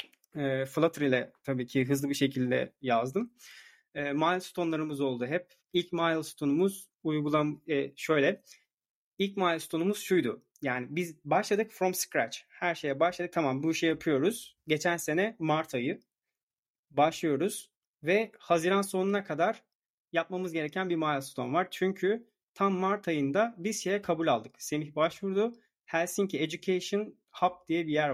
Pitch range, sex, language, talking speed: 140-185 Hz, male, Turkish, 135 wpm